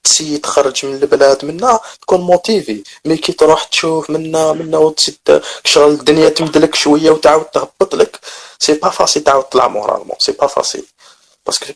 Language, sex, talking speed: Arabic, male, 155 wpm